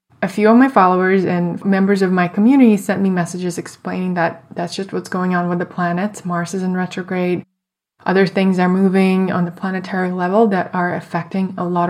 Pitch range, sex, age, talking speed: 175-200 Hz, female, 20-39, 200 wpm